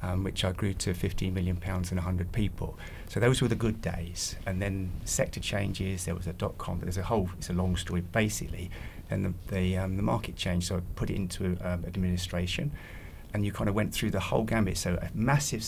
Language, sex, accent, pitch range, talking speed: English, male, British, 90-110 Hz, 225 wpm